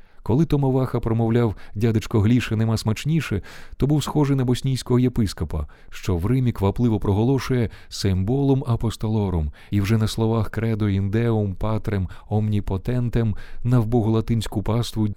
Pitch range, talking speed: 95-120 Hz, 125 wpm